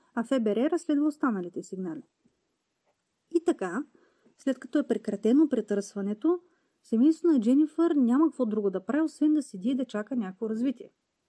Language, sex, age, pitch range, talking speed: Bulgarian, female, 30-49, 210-295 Hz, 150 wpm